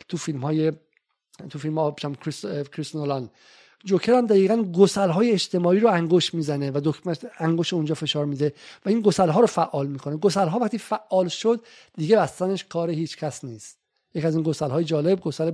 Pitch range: 145-180 Hz